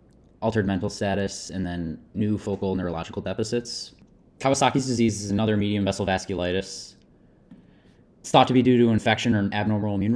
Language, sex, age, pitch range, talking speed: English, male, 20-39, 100-120 Hz, 160 wpm